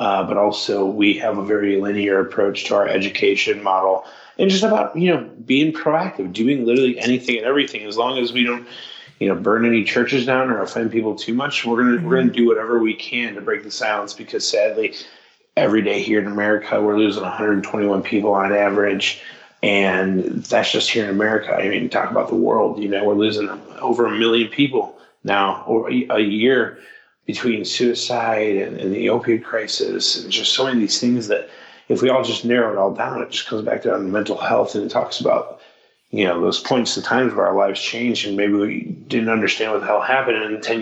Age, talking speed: 30-49, 215 wpm